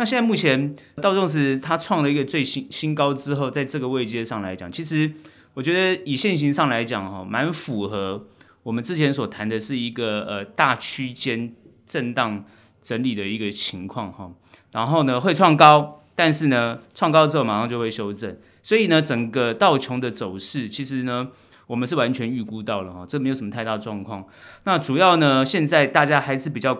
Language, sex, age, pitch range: Chinese, male, 30-49, 105-140 Hz